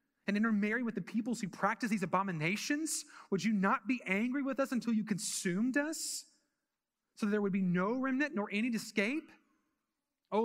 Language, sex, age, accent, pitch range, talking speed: English, male, 30-49, American, 180-230 Hz, 185 wpm